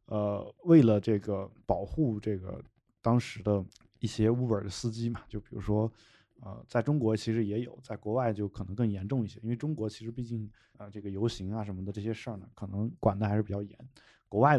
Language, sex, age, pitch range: Chinese, male, 20-39, 105-120 Hz